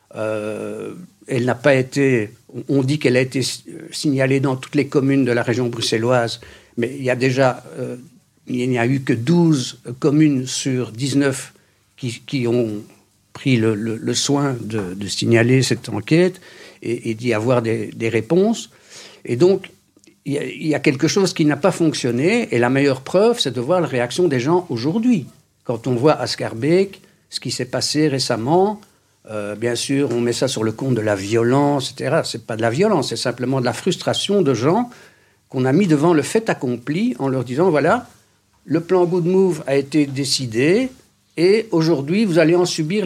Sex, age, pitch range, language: male, 60-79, 120-155 Hz, French